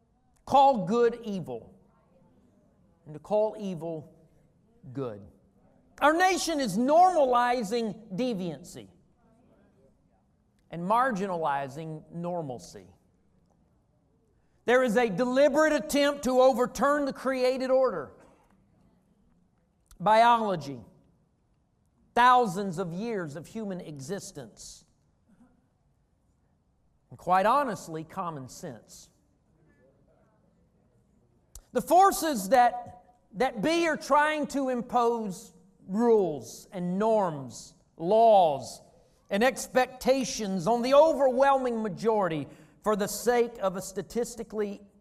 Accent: American